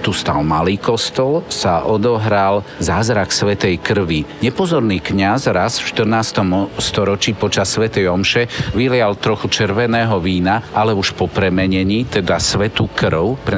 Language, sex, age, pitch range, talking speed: Slovak, male, 50-69, 95-115 Hz, 135 wpm